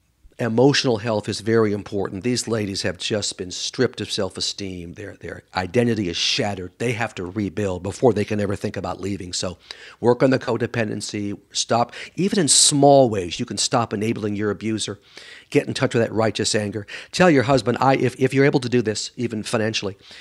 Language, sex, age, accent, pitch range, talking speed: English, male, 50-69, American, 105-130 Hz, 195 wpm